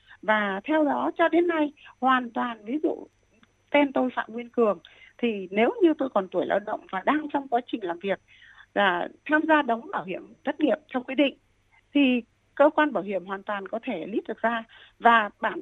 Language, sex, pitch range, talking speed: Vietnamese, female, 220-300 Hz, 210 wpm